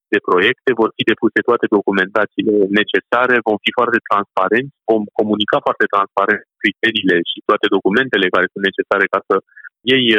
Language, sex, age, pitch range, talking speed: Romanian, male, 30-49, 110-135 Hz, 155 wpm